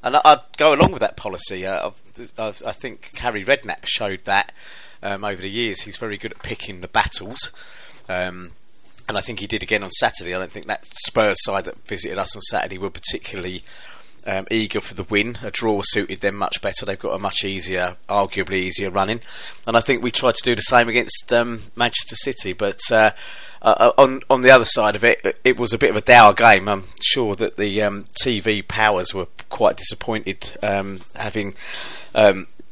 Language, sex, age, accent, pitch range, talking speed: English, male, 30-49, British, 95-115 Hz, 200 wpm